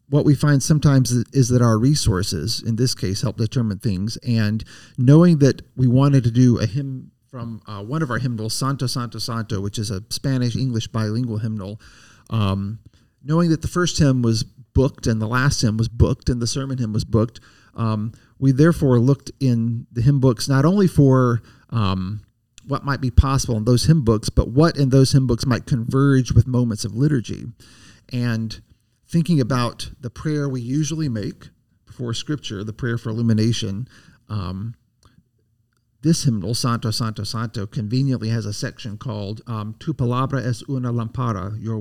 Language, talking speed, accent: English, 175 wpm, American